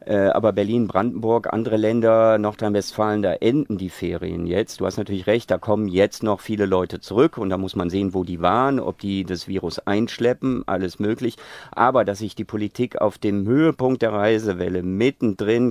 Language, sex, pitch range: German, male, 95-110 Hz